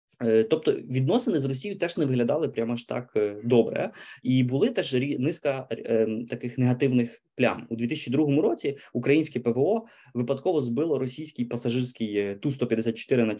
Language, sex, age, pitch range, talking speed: Ukrainian, male, 20-39, 115-135 Hz, 135 wpm